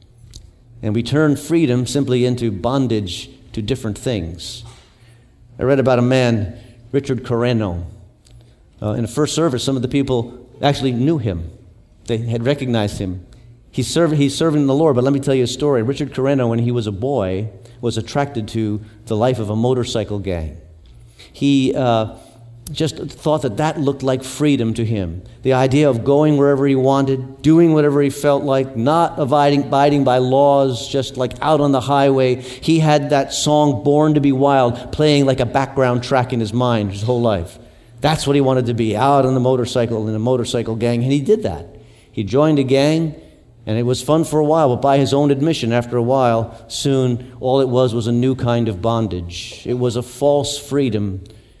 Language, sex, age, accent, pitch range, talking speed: English, male, 50-69, American, 115-140 Hz, 195 wpm